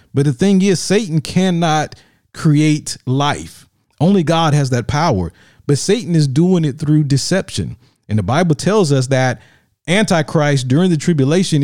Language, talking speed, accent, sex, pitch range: English, 155 wpm, American, male, 130-160 Hz